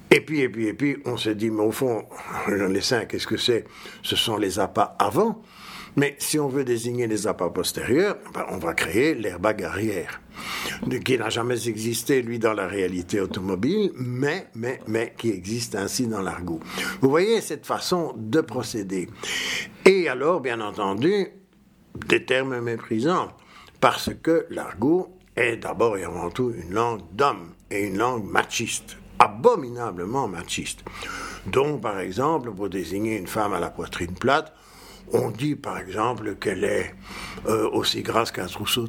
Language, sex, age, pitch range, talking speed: French, male, 60-79, 110-150 Hz, 165 wpm